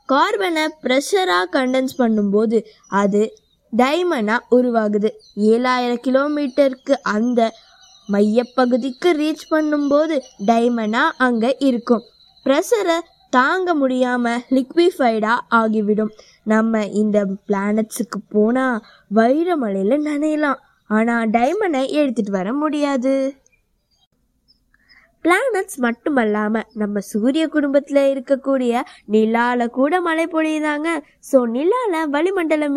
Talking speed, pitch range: 80 wpm, 230-315 Hz